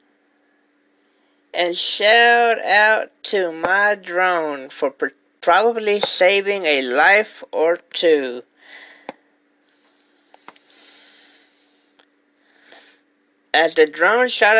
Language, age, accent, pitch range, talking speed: English, 40-59, American, 150-205 Hz, 70 wpm